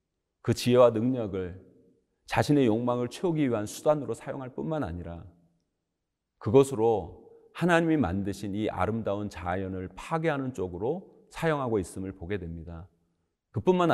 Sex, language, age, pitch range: male, Korean, 40-59, 95-125 Hz